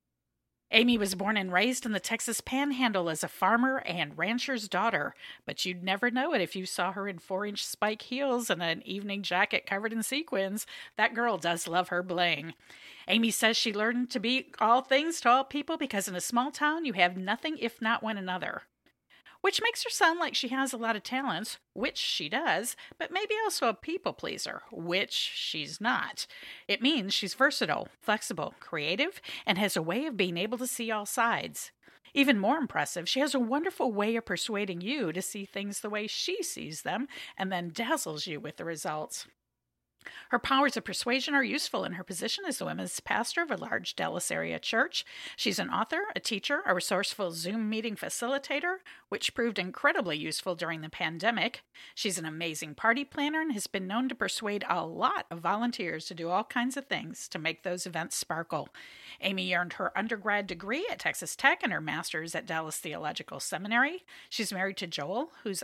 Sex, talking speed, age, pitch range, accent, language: female, 195 wpm, 40-59, 180-255 Hz, American, English